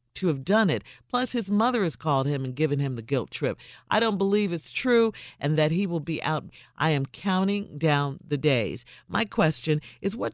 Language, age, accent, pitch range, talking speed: English, 50-69, American, 135-195 Hz, 215 wpm